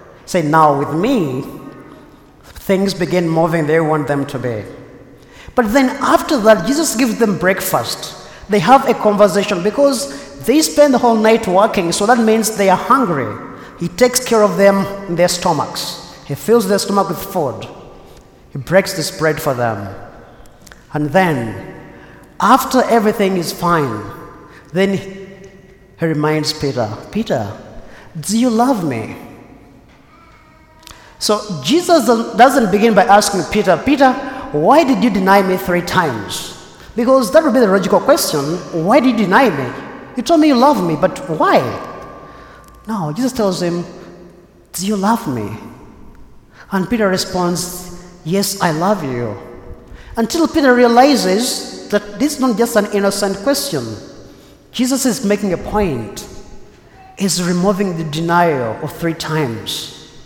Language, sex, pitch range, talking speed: English, male, 170-235 Hz, 145 wpm